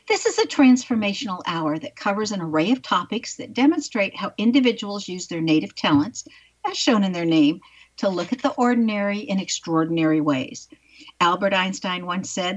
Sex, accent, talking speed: female, American, 170 wpm